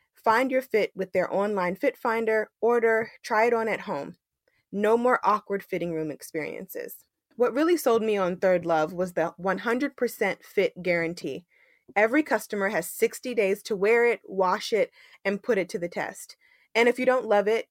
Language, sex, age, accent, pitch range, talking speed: English, female, 20-39, American, 180-235 Hz, 185 wpm